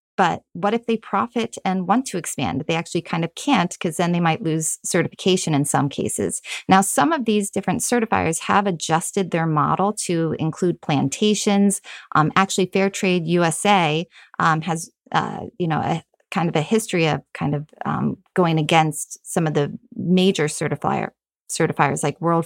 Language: English